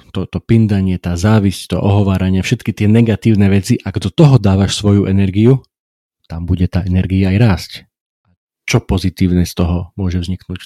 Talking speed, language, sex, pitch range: 165 wpm, Slovak, male, 95-105 Hz